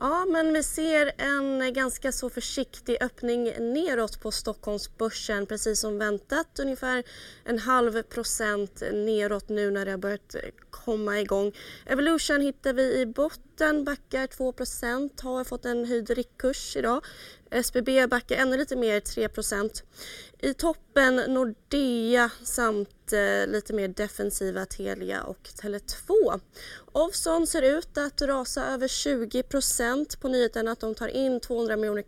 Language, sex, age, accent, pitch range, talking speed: Swedish, female, 20-39, native, 210-260 Hz, 135 wpm